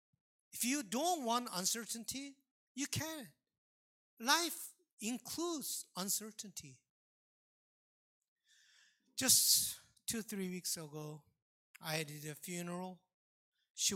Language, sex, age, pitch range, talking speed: English, male, 50-69, 150-225 Hz, 85 wpm